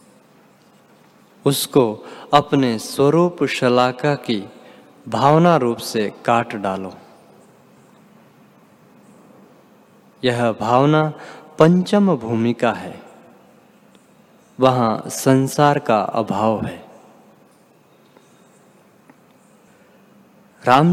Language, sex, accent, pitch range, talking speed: Hindi, male, native, 120-170 Hz, 60 wpm